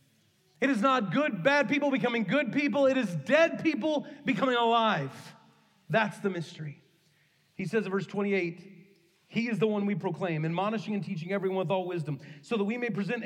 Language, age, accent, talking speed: English, 40-59, American, 185 wpm